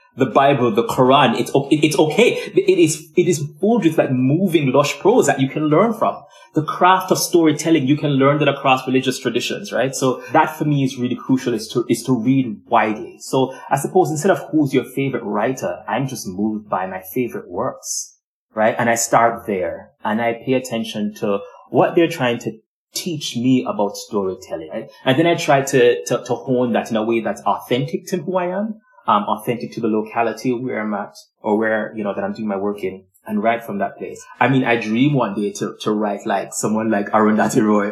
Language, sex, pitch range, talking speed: English, male, 110-145 Hz, 215 wpm